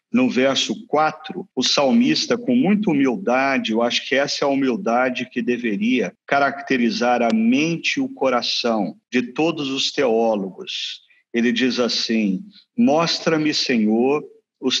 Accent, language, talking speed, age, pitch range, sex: Brazilian, Portuguese, 135 wpm, 50-69, 120-195 Hz, male